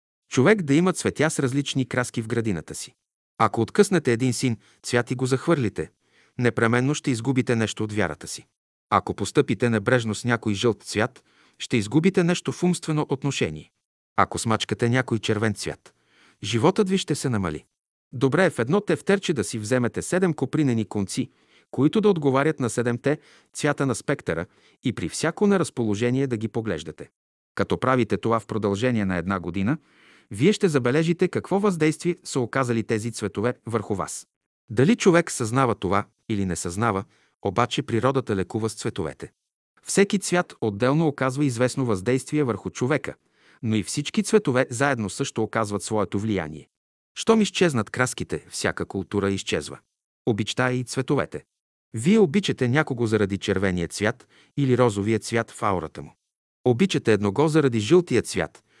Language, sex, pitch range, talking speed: Bulgarian, male, 110-150 Hz, 150 wpm